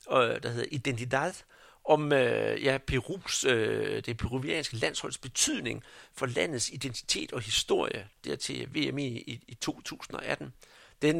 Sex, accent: male, native